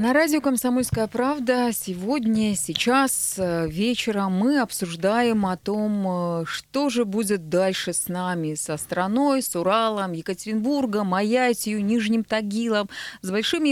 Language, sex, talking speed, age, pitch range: Russian, female, 120 wpm, 20-39, 180-230 Hz